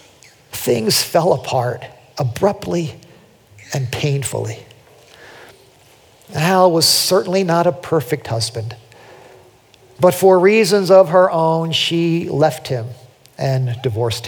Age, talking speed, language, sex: 50-69, 100 wpm, English, male